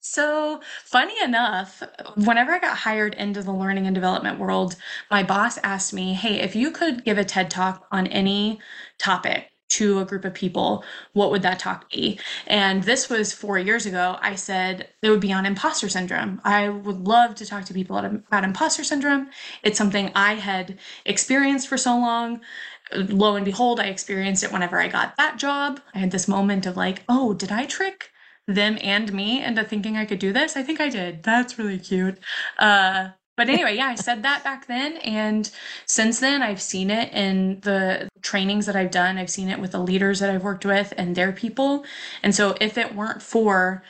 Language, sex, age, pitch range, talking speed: English, female, 20-39, 190-235 Hz, 200 wpm